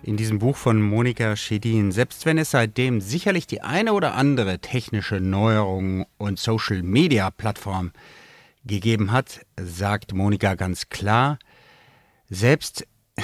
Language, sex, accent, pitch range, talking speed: German, male, German, 100-130 Hz, 120 wpm